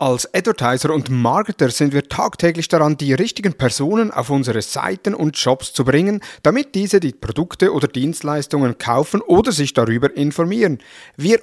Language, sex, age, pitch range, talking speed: German, male, 50-69, 130-175 Hz, 160 wpm